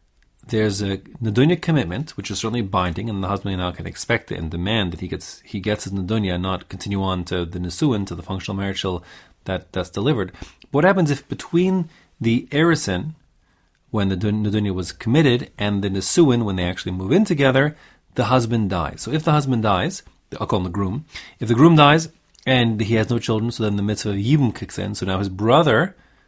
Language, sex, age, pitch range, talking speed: English, male, 30-49, 95-130 Hz, 210 wpm